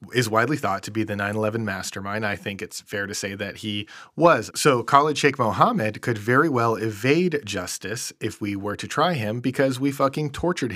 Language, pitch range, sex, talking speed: English, 105-135 Hz, male, 200 wpm